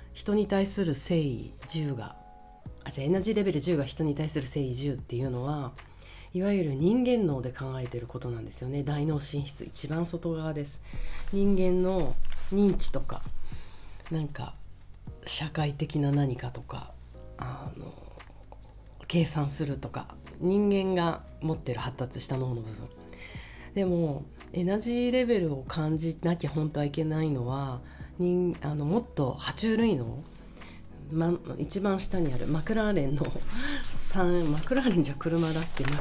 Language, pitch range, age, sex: Japanese, 125-170 Hz, 40-59, female